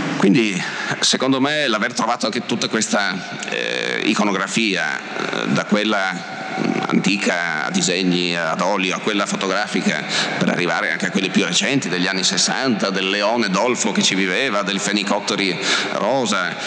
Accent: native